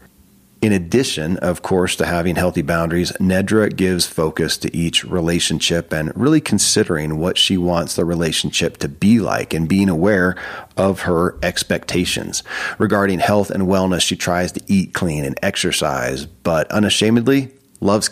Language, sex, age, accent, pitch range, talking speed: English, male, 40-59, American, 85-105 Hz, 150 wpm